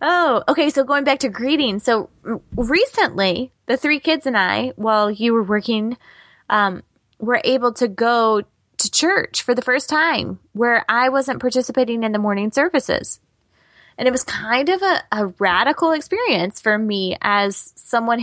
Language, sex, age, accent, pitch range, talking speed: English, female, 20-39, American, 210-285 Hz, 165 wpm